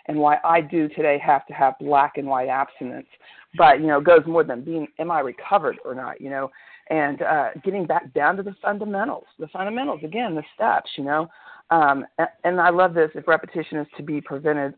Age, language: 40-59, English